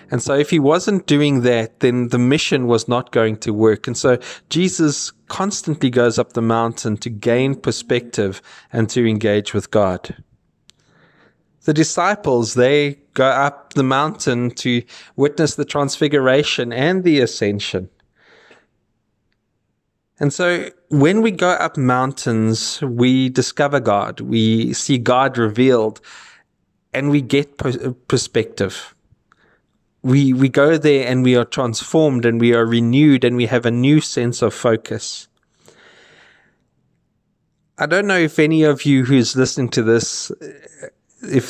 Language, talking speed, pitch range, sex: English, 135 wpm, 115-140 Hz, male